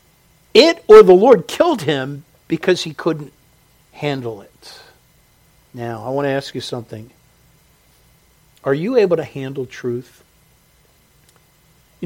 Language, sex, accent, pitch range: English, male, American, 150-200 Hz